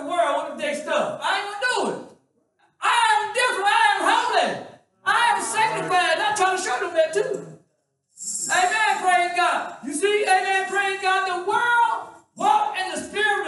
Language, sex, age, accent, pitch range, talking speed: English, male, 60-79, American, 315-405 Hz, 185 wpm